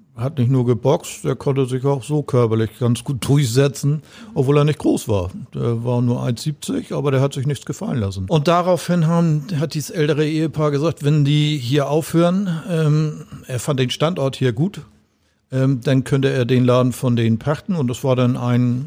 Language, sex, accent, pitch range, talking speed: German, male, German, 120-145 Hz, 195 wpm